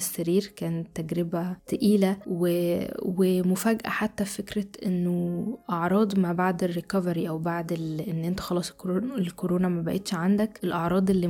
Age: 10-29